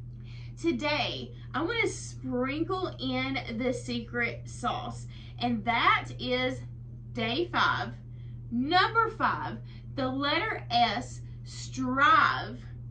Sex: female